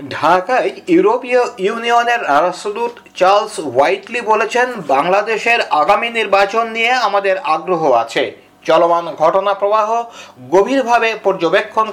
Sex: male